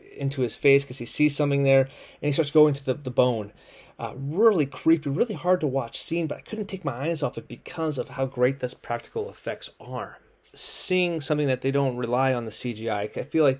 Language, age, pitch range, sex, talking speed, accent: English, 30-49, 120-145 Hz, male, 230 wpm, American